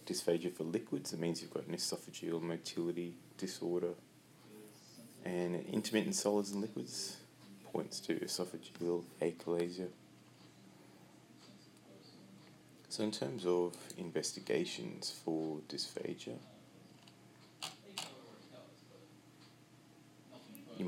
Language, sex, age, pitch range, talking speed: English, male, 30-49, 85-95 Hz, 80 wpm